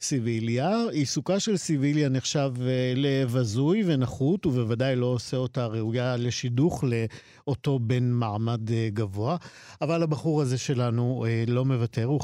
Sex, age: male, 50-69